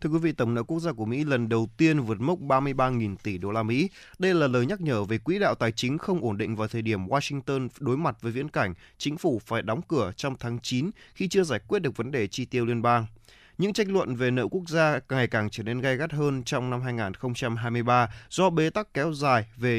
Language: Vietnamese